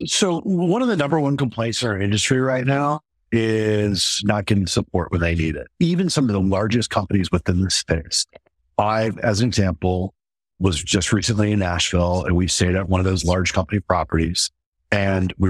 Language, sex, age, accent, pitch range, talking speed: English, male, 50-69, American, 90-110 Hz, 195 wpm